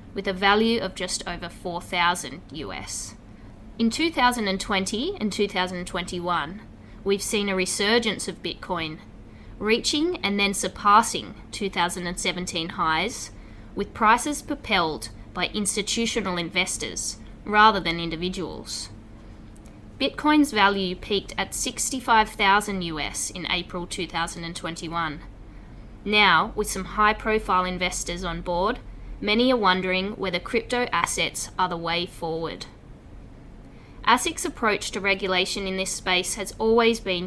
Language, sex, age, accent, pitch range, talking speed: English, female, 20-39, Australian, 165-210 Hz, 115 wpm